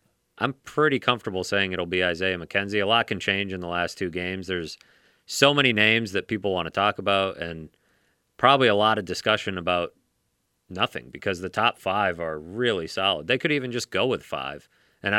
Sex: male